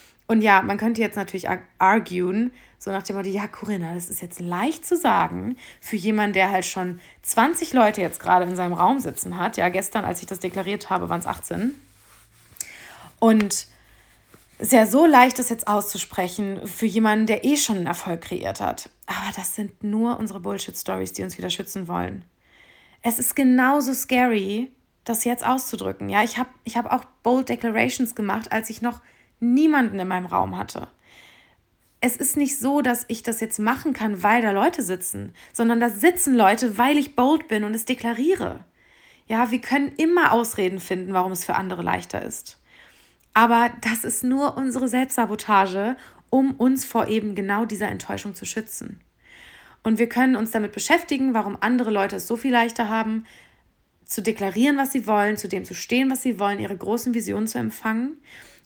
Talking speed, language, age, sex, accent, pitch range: 180 wpm, German, 20-39, female, German, 195-250 Hz